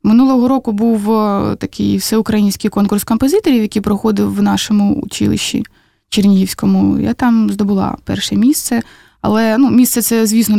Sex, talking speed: female, 130 wpm